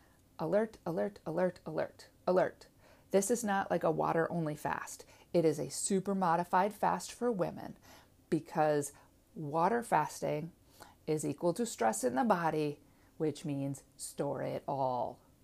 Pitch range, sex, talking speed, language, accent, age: 150-195 Hz, female, 140 wpm, English, American, 40-59